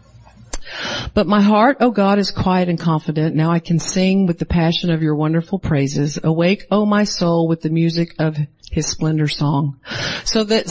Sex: female